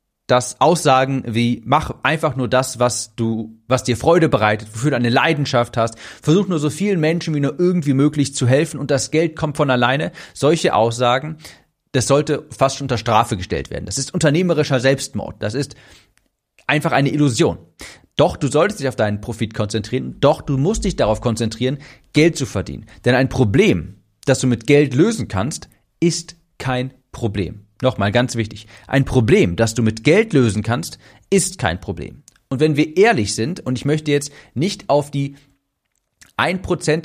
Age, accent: 40-59, German